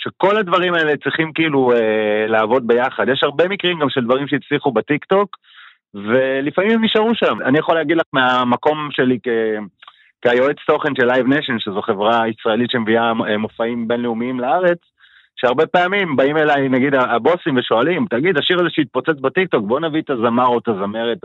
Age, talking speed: 40-59, 160 wpm